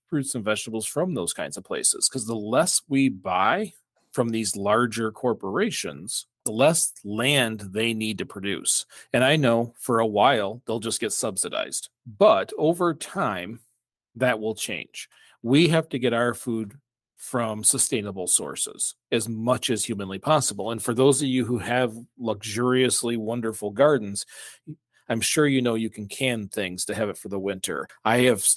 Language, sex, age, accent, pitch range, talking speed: English, male, 40-59, American, 110-135 Hz, 170 wpm